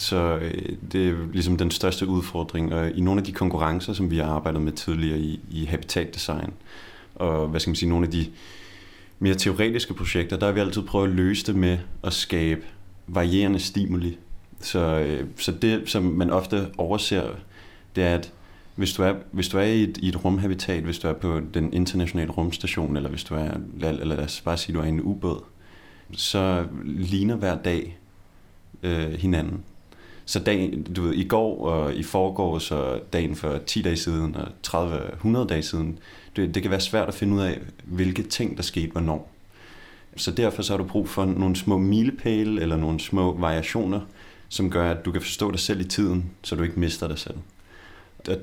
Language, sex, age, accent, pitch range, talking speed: Danish, male, 30-49, native, 85-95 Hz, 185 wpm